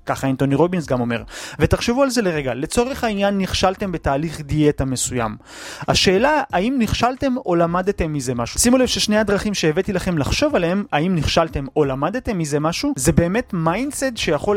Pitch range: 150-200 Hz